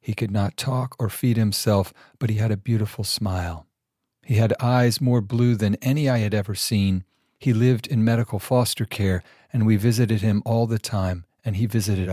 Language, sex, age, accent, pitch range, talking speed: English, male, 50-69, American, 105-125 Hz, 200 wpm